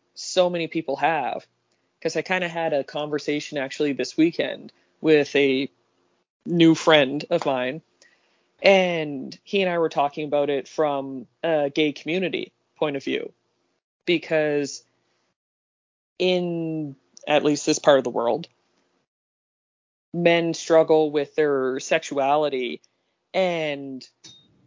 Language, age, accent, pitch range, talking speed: English, 20-39, American, 140-165 Hz, 120 wpm